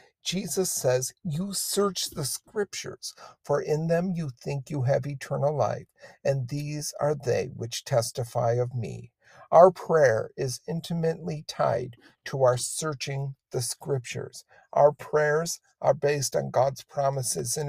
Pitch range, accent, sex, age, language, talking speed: 125-160 Hz, American, male, 50-69, English, 140 wpm